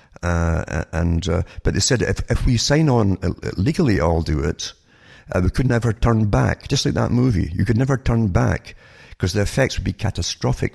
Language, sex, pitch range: English, male, 90-115 Hz